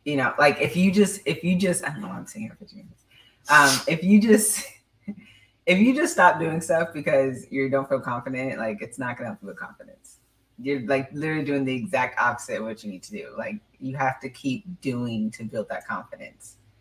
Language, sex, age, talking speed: English, female, 20-39, 220 wpm